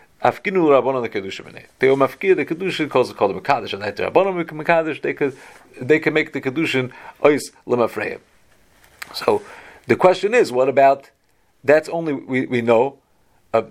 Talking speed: 55 wpm